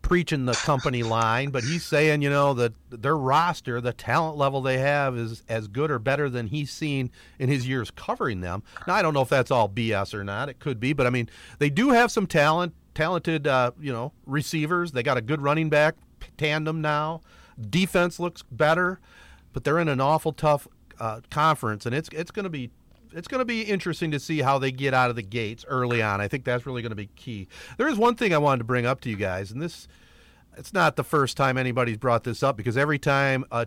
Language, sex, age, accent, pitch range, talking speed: English, male, 40-59, American, 115-155 Hz, 235 wpm